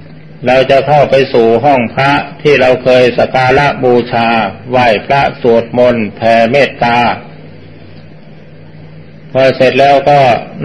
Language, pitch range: Thai, 120-140 Hz